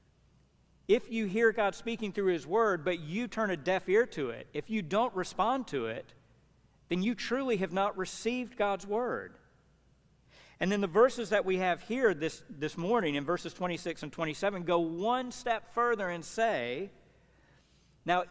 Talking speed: 175 wpm